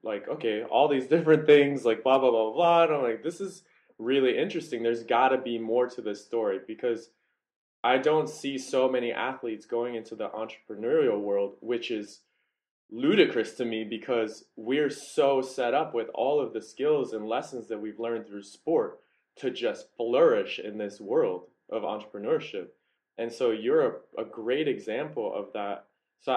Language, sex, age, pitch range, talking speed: English, male, 20-39, 115-150 Hz, 175 wpm